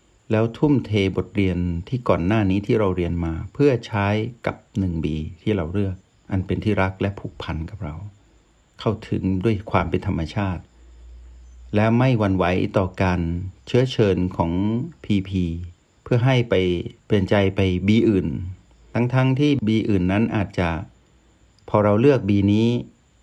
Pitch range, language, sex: 90-115 Hz, Thai, male